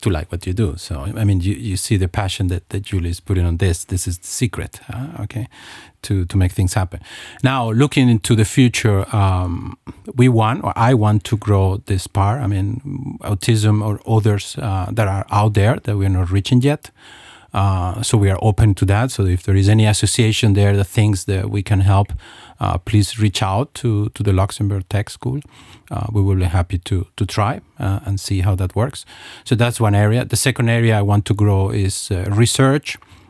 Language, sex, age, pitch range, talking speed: English, male, 40-59, 100-115 Hz, 215 wpm